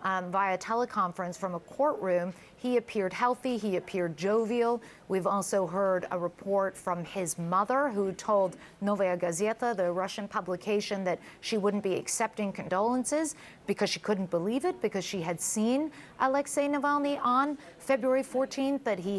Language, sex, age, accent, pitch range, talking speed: English, female, 40-59, American, 190-235 Hz, 155 wpm